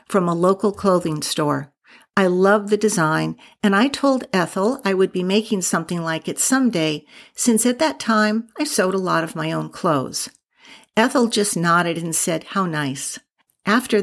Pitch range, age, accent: 170-220 Hz, 50-69, American